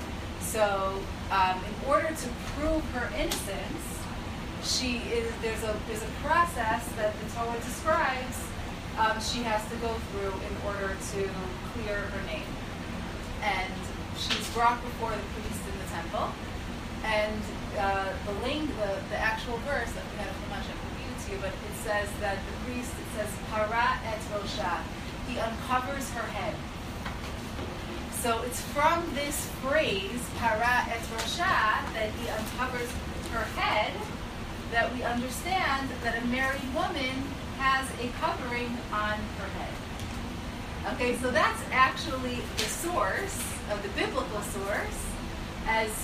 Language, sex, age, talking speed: English, female, 30-49, 135 wpm